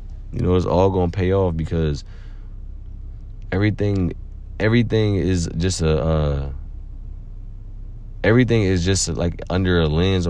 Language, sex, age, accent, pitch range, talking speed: English, male, 30-49, American, 85-100 Hz, 120 wpm